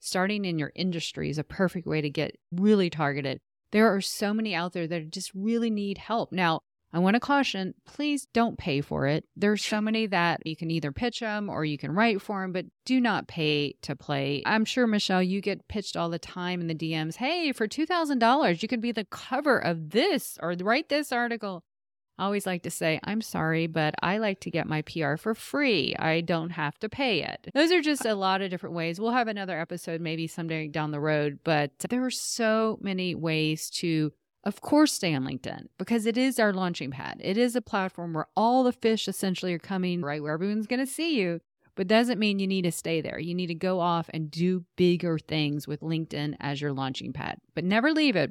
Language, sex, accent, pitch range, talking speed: English, female, American, 160-220 Hz, 225 wpm